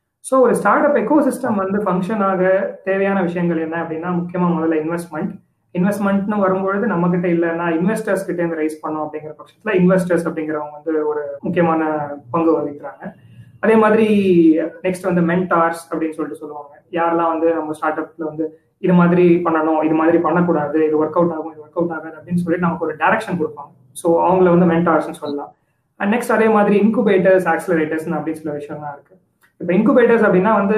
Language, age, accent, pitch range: Tamil, 20-39, native, 155-190 Hz